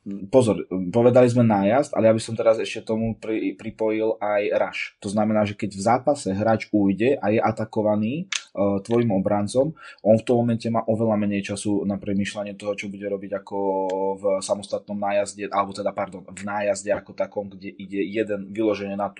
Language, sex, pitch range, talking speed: Czech, male, 100-110 Hz, 185 wpm